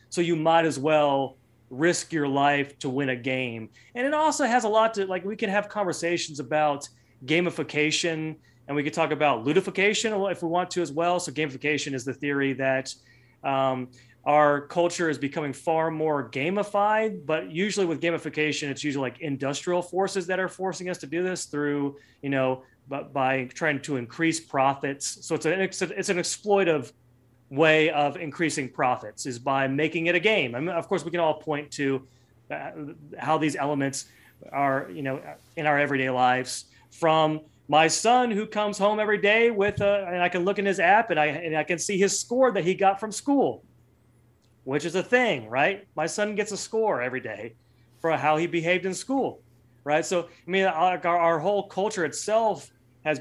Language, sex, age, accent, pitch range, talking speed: English, male, 30-49, American, 135-185 Hz, 195 wpm